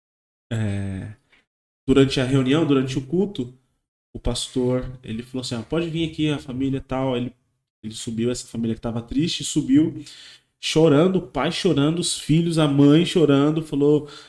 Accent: Brazilian